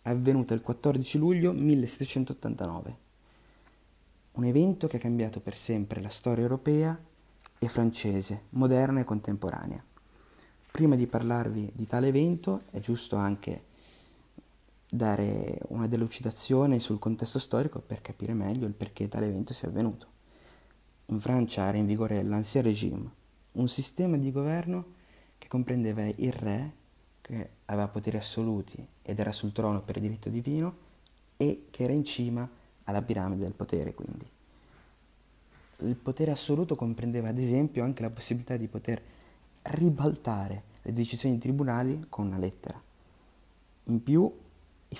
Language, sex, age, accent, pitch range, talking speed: Italian, male, 30-49, native, 105-130 Hz, 135 wpm